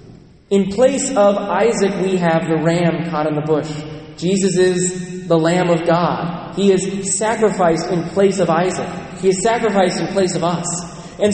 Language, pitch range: English, 170-215 Hz